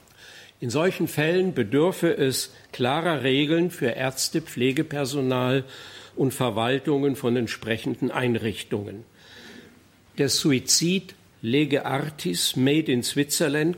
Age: 50-69